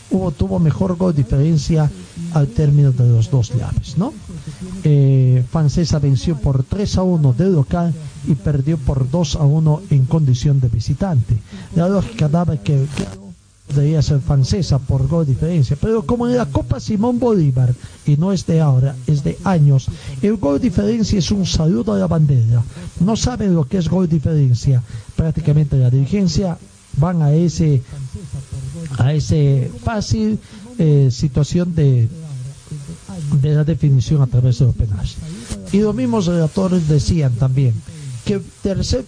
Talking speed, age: 155 wpm, 50-69